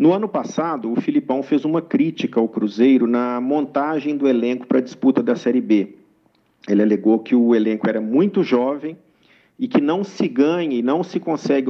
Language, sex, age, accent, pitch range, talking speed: Portuguese, male, 50-69, Brazilian, 125-195 Hz, 190 wpm